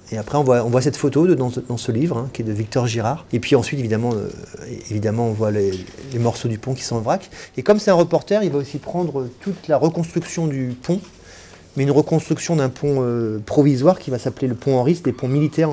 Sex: male